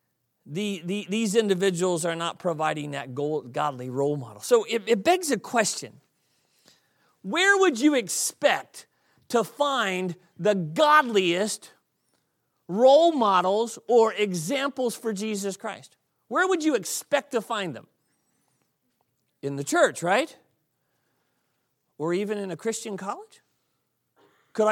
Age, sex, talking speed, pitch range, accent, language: 40-59, male, 115 wpm, 155-240 Hz, American, English